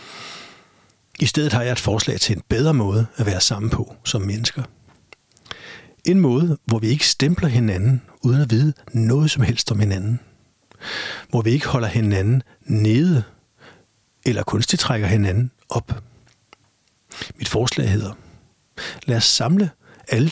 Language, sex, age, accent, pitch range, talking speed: Danish, male, 60-79, native, 105-130 Hz, 145 wpm